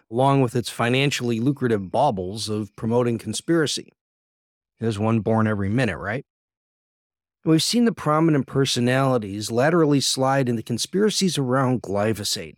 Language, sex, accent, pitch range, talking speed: English, male, American, 110-140 Hz, 130 wpm